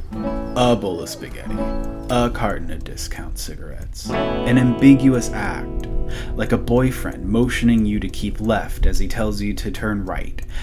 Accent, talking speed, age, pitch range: American, 150 wpm, 30-49, 100-120 Hz